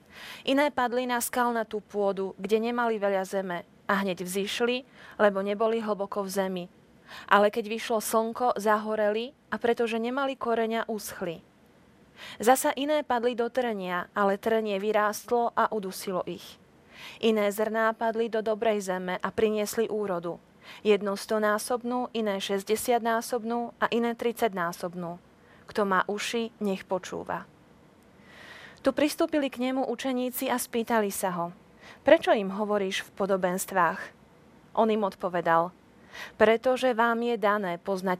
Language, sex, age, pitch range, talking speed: Slovak, female, 30-49, 195-235 Hz, 130 wpm